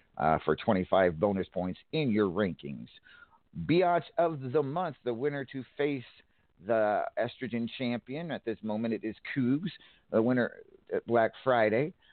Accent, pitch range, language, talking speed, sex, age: American, 100-130 Hz, English, 150 wpm, male, 50-69